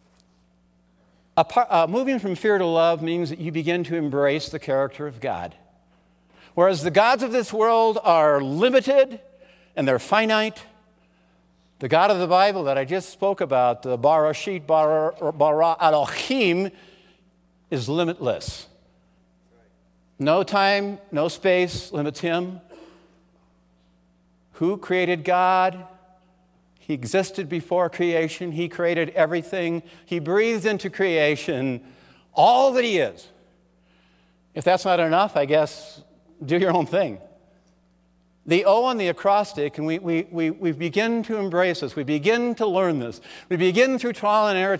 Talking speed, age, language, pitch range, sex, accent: 135 wpm, 60-79, English, 135-190 Hz, male, American